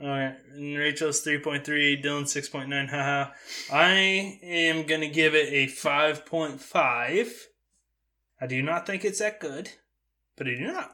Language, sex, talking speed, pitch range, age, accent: English, male, 145 wpm, 135-165 Hz, 20-39, American